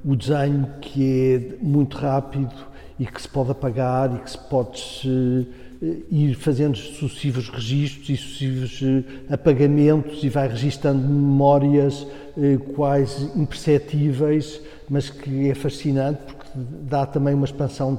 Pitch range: 135-150 Hz